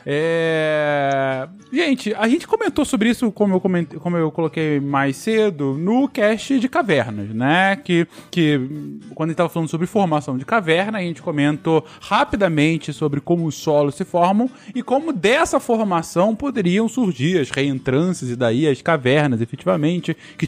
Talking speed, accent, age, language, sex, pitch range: 155 wpm, Brazilian, 20-39, Portuguese, male, 150-230 Hz